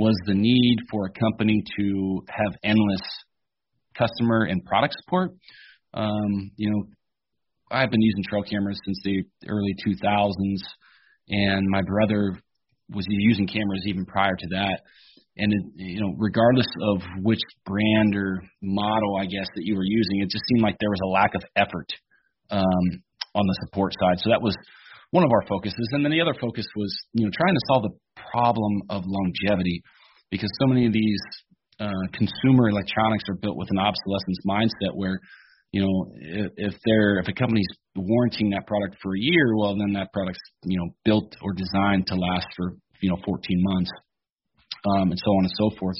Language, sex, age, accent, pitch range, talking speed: English, male, 30-49, American, 95-110 Hz, 180 wpm